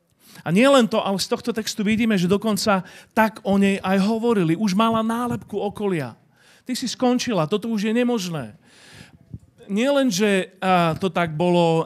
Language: Slovak